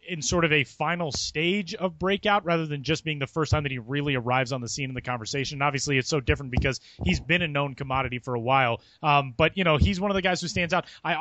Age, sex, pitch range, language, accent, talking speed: 30-49, male, 135-165 Hz, English, American, 275 wpm